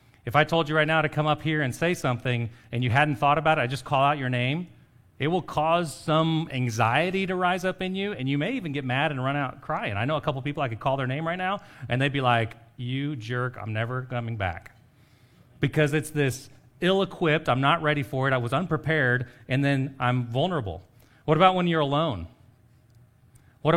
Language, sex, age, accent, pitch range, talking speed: English, male, 40-59, American, 120-150 Hz, 225 wpm